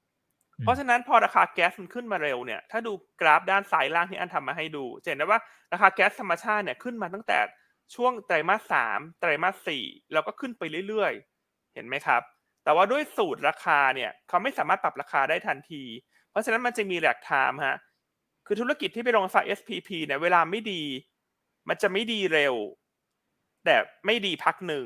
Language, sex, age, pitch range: Thai, male, 20-39, 170-225 Hz